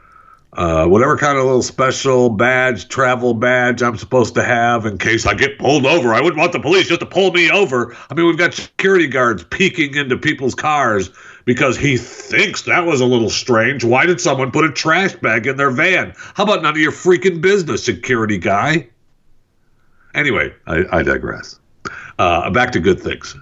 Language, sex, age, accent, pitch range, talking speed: English, male, 60-79, American, 115-150 Hz, 190 wpm